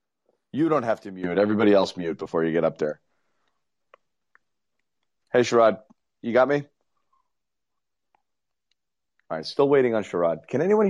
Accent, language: American, English